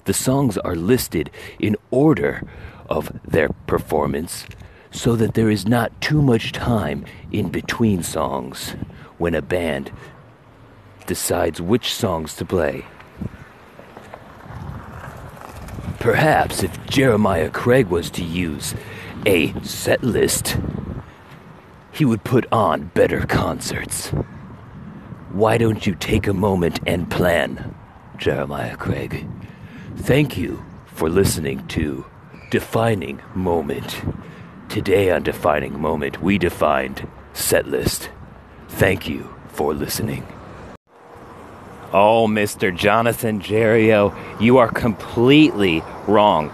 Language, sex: English, male